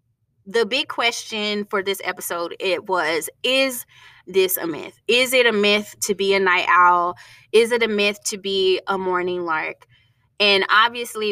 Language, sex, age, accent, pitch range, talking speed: English, female, 20-39, American, 170-220 Hz, 170 wpm